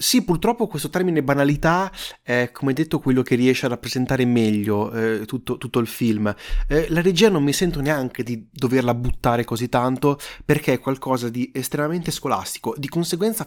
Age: 30-49